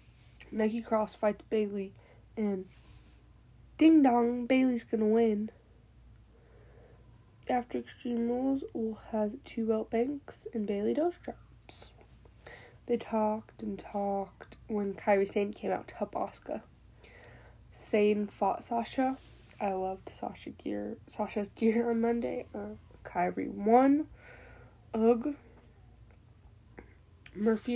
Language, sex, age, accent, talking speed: English, female, 10-29, American, 110 wpm